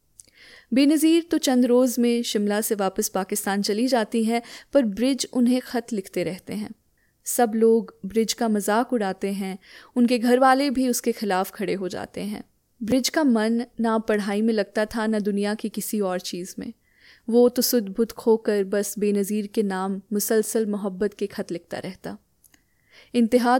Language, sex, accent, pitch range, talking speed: Hindi, female, native, 210-245 Hz, 170 wpm